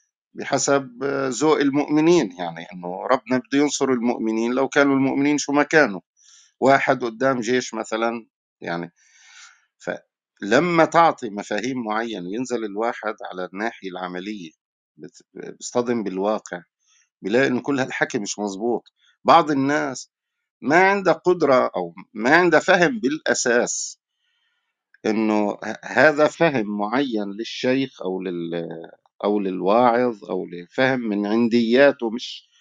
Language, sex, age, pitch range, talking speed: Arabic, male, 50-69, 105-140 Hz, 115 wpm